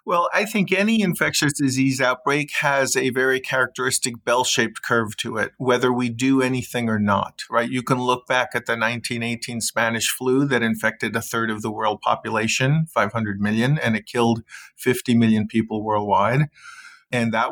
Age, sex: 40-59, male